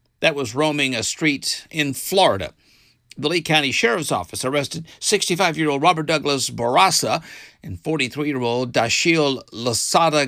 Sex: male